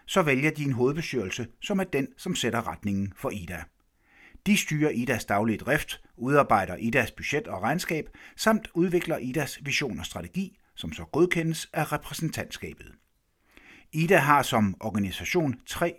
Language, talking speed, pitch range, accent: Danish, 145 wpm, 110-165 Hz, native